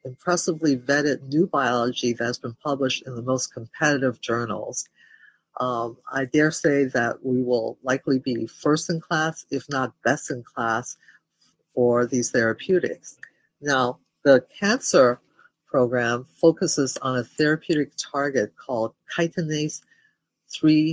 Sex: female